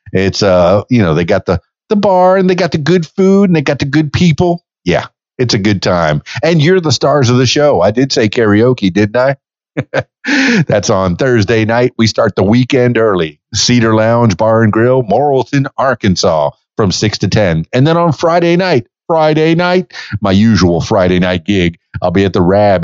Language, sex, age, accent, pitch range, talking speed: English, male, 50-69, American, 105-155 Hz, 200 wpm